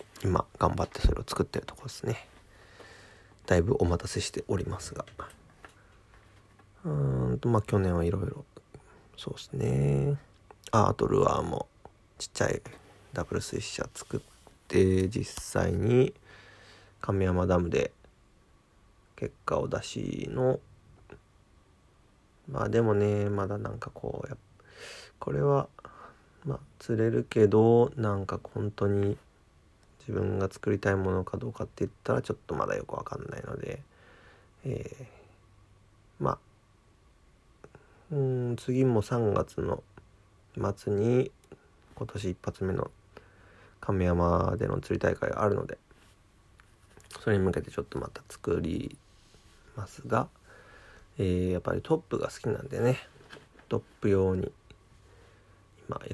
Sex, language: male, Japanese